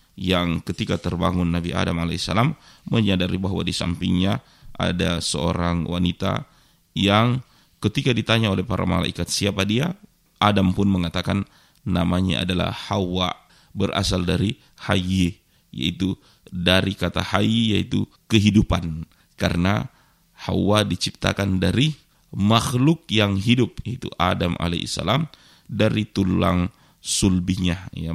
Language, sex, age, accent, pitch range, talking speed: Indonesian, male, 30-49, native, 90-105 Hz, 105 wpm